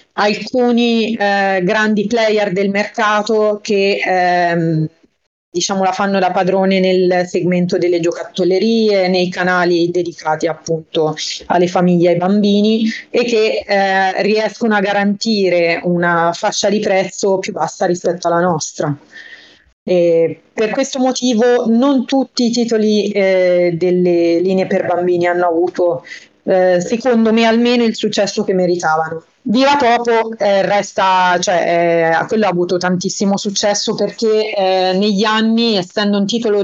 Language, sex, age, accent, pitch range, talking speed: Italian, female, 30-49, native, 175-210 Hz, 135 wpm